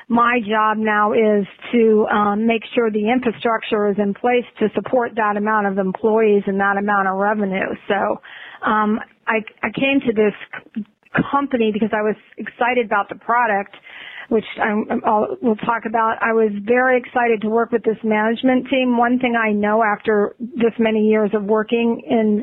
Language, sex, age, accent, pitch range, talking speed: English, female, 40-59, American, 215-245 Hz, 170 wpm